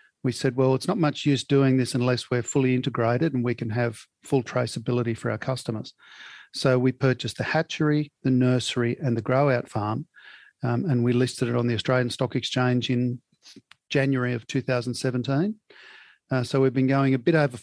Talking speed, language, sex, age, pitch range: 185 wpm, English, male, 50-69, 120-140 Hz